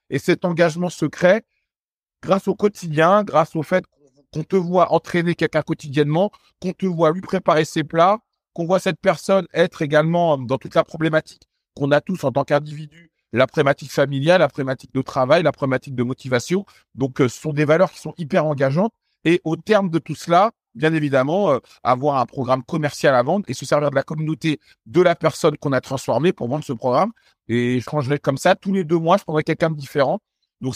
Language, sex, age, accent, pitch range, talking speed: French, male, 50-69, French, 140-185 Hz, 205 wpm